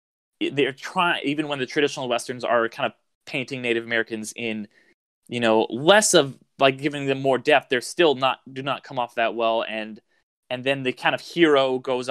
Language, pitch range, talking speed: English, 120-150 Hz, 200 wpm